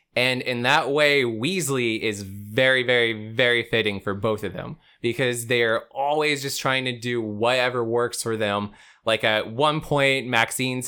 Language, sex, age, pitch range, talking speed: English, male, 20-39, 115-150 Hz, 165 wpm